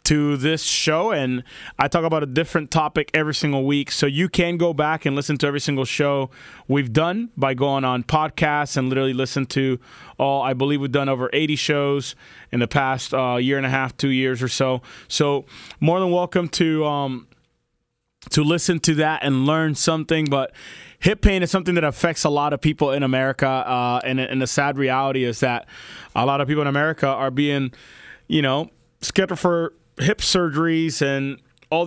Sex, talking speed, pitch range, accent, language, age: male, 195 wpm, 135-160 Hz, American, English, 20-39